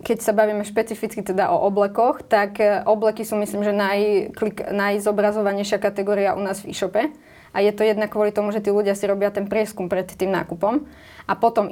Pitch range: 195-215 Hz